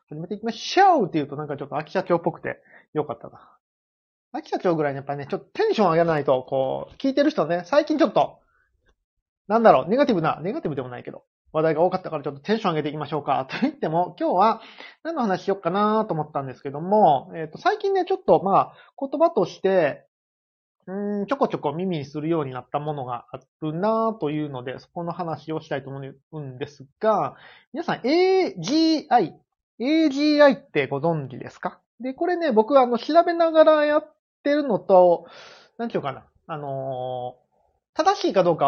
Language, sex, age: Japanese, male, 30-49